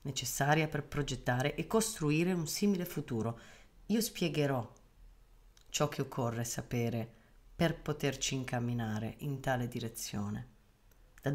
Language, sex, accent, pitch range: Italian, female, native, 120-155 Hz